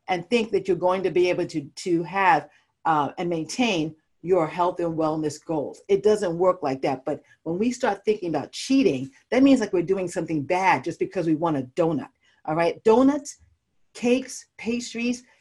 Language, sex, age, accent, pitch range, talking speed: English, female, 40-59, American, 170-250 Hz, 190 wpm